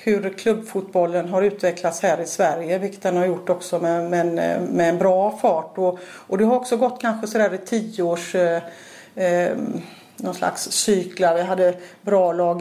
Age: 40-59